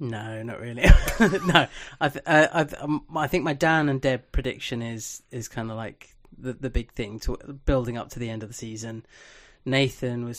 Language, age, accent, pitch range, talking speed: English, 20-39, British, 115-130 Hz, 200 wpm